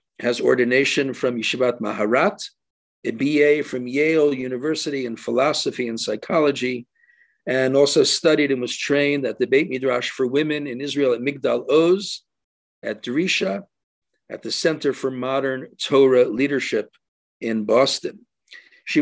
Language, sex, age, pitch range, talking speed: English, male, 50-69, 120-145 Hz, 135 wpm